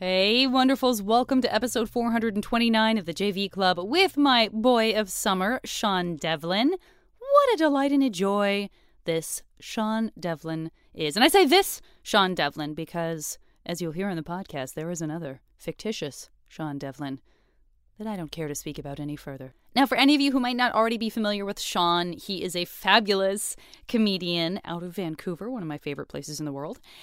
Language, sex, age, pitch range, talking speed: English, female, 20-39, 165-230 Hz, 185 wpm